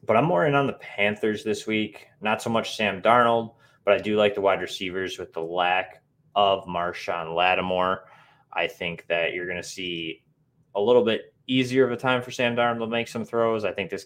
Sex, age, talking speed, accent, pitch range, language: male, 20-39, 220 wpm, American, 100-145 Hz, English